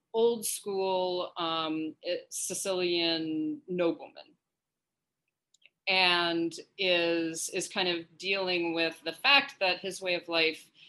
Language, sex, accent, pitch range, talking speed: English, female, American, 160-185 Hz, 105 wpm